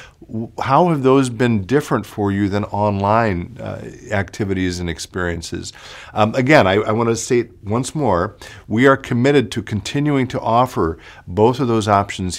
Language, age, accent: English, 50-69, American